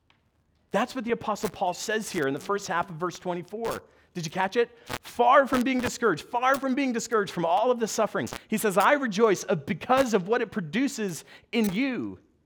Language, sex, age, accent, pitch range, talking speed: English, male, 40-59, American, 170-235 Hz, 200 wpm